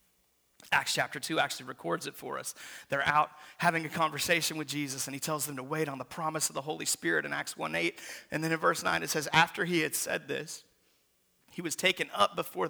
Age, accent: 30-49, American